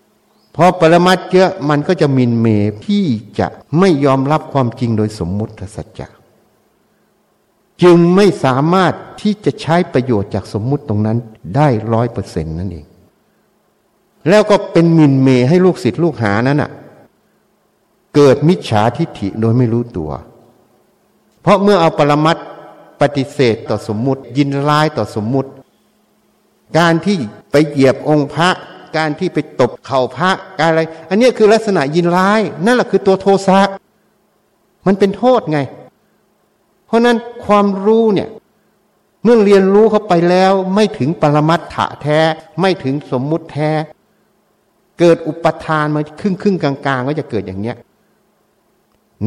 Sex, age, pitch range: male, 60-79, 130-190 Hz